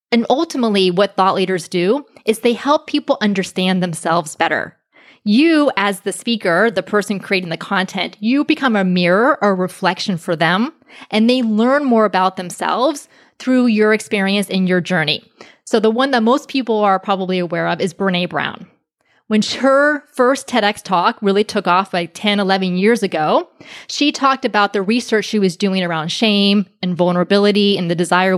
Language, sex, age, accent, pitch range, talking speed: English, female, 20-39, American, 185-245 Hz, 175 wpm